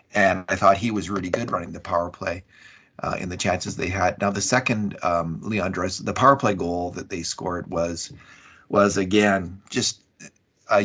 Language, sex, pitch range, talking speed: English, male, 90-110 Hz, 190 wpm